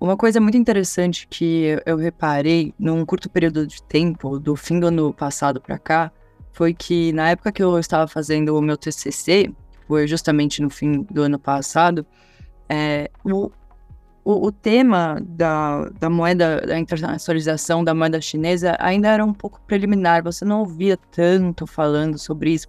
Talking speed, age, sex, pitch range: 160 wpm, 20-39, female, 155-180 Hz